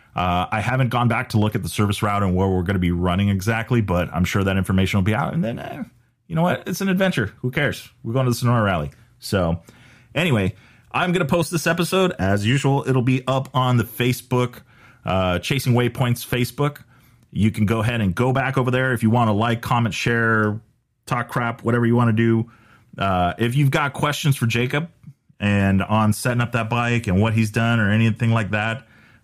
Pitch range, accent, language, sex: 100-125 Hz, American, English, male